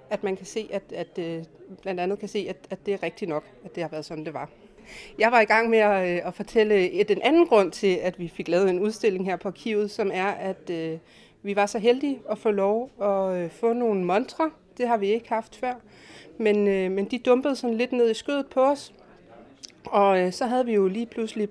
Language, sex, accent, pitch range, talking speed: Danish, female, native, 190-240 Hz, 235 wpm